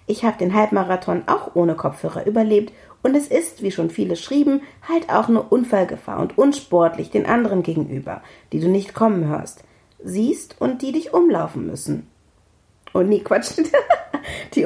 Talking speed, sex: 160 wpm, female